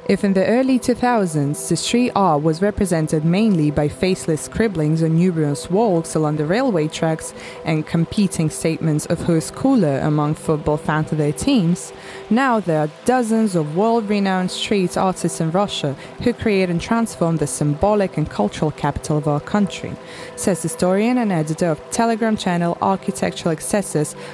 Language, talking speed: English, 160 wpm